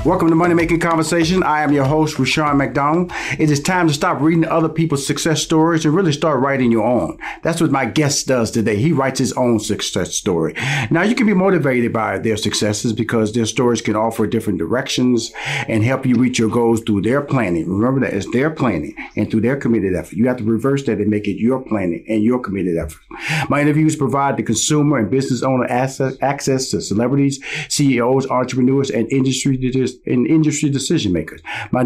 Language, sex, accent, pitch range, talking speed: English, male, American, 125-165 Hz, 200 wpm